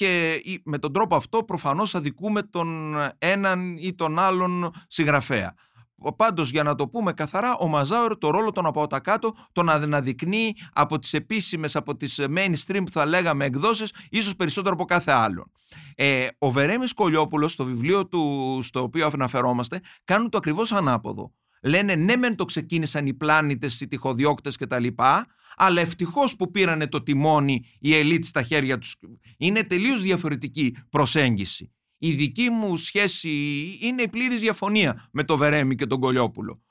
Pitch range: 145-215 Hz